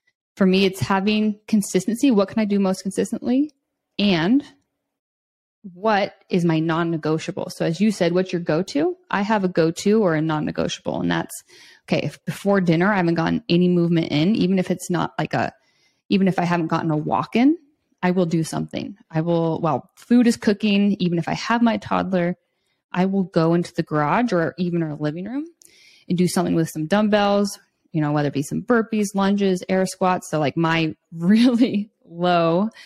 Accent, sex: American, female